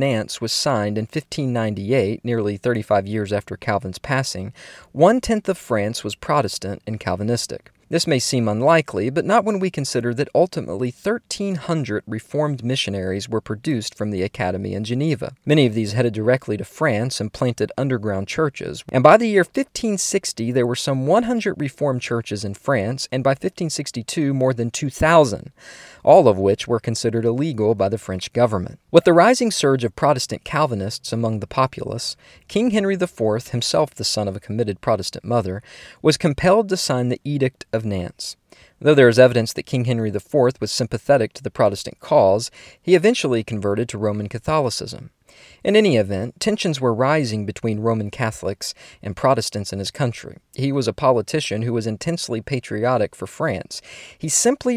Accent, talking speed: American, 170 wpm